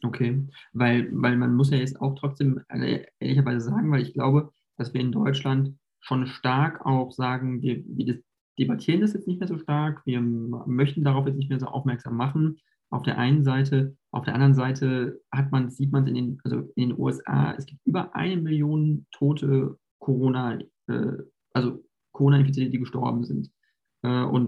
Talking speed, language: 185 wpm, German